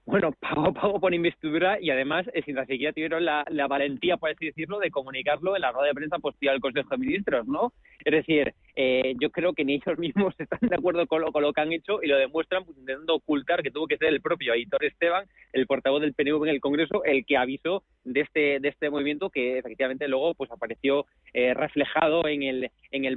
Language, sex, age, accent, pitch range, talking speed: Spanish, male, 20-39, Spanish, 130-155 Hz, 230 wpm